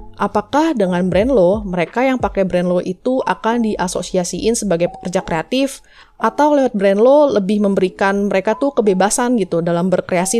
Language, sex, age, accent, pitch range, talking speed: Indonesian, female, 20-39, native, 180-230 Hz, 140 wpm